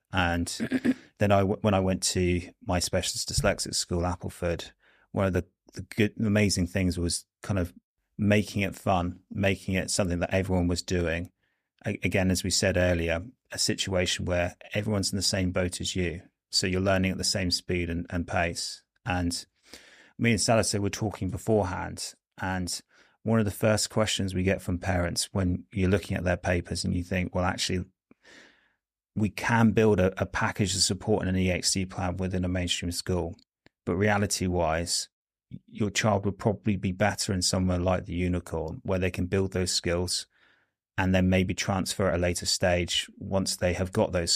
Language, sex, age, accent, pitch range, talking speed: English, male, 30-49, British, 90-100 Hz, 180 wpm